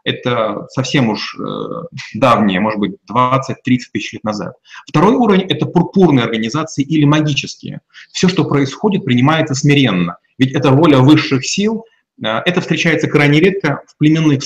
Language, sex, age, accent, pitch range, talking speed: Russian, male, 30-49, native, 135-175 Hz, 140 wpm